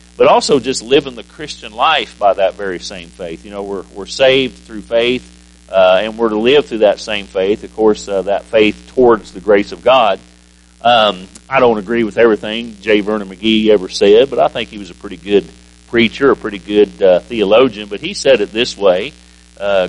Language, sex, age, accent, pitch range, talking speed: English, male, 40-59, American, 90-120 Hz, 210 wpm